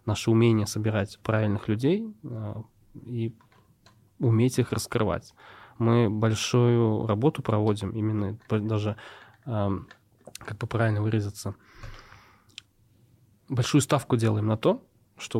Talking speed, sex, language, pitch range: 105 wpm, male, Russian, 105-120 Hz